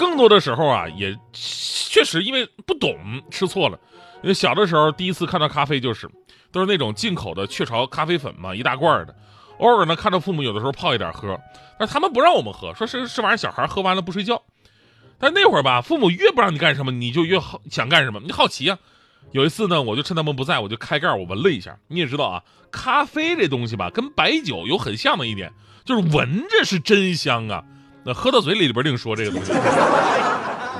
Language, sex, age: Chinese, male, 30-49